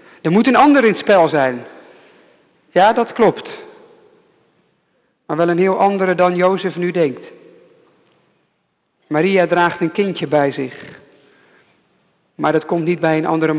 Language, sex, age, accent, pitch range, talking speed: English, male, 50-69, Dutch, 175-225 Hz, 140 wpm